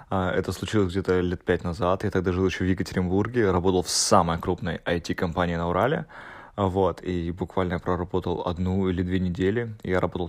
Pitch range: 90-100 Hz